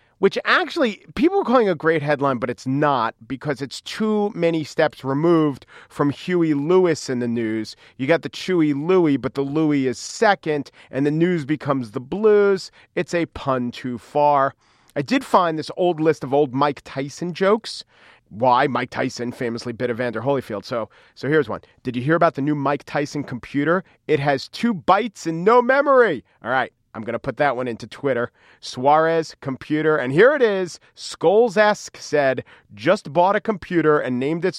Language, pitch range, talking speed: English, 135-180 Hz, 185 wpm